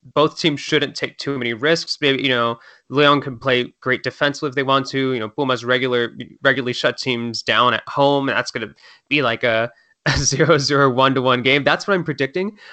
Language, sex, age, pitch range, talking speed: English, male, 20-39, 125-145 Hz, 220 wpm